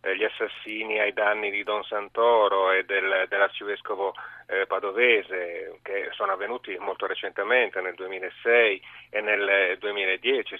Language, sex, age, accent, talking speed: Italian, male, 30-49, native, 125 wpm